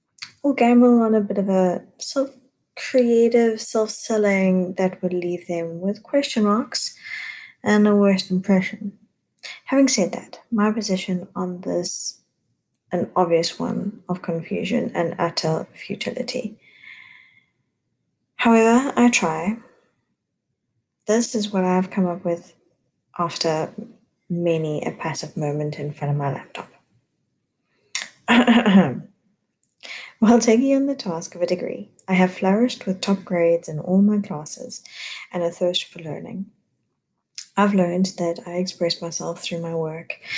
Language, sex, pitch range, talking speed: English, female, 170-220 Hz, 130 wpm